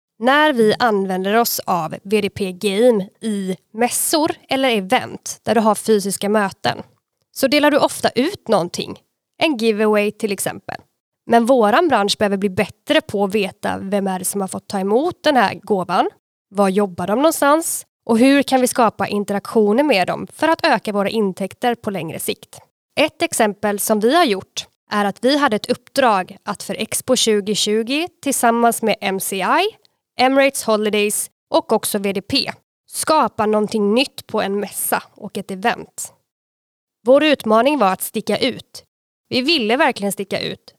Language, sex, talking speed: English, female, 160 wpm